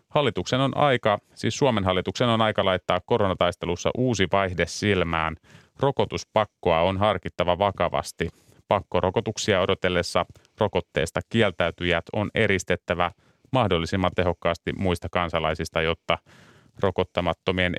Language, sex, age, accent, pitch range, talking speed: Finnish, male, 30-49, native, 90-110 Hz, 100 wpm